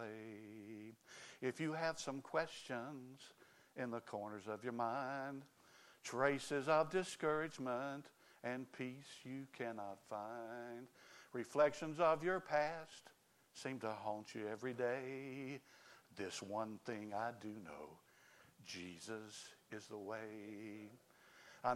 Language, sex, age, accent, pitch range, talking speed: English, male, 60-79, American, 115-150 Hz, 110 wpm